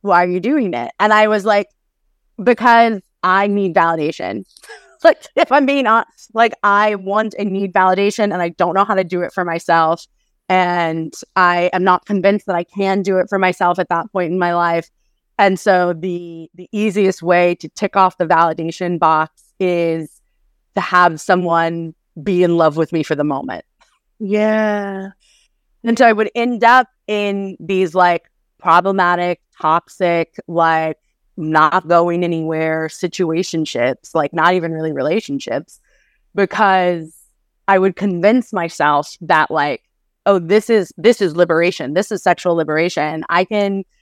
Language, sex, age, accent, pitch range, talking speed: English, female, 30-49, American, 165-205 Hz, 160 wpm